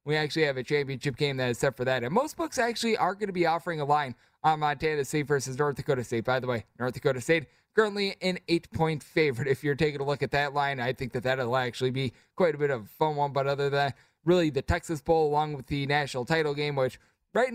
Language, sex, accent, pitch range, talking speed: English, male, American, 140-170 Hz, 265 wpm